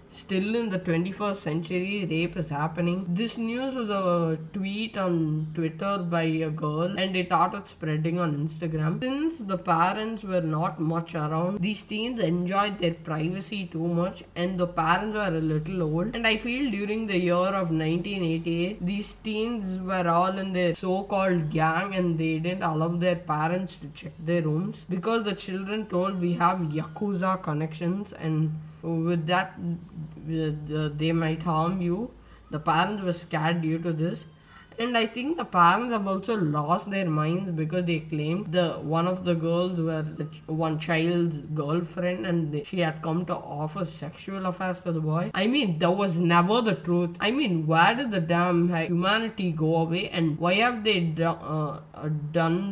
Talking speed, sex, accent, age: 170 wpm, female, Indian, 20-39